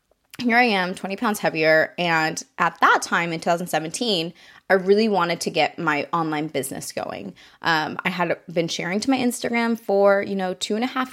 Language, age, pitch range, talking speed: English, 20-39, 160-200 Hz, 195 wpm